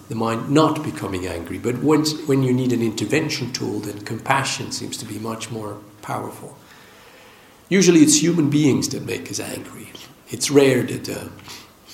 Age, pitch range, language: 50-69, 105-140 Hz, English